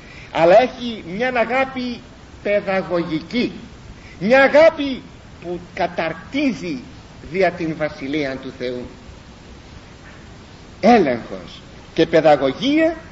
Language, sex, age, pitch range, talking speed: Greek, male, 50-69, 160-255 Hz, 80 wpm